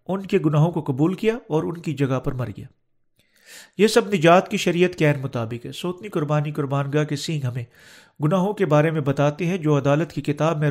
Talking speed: 215 wpm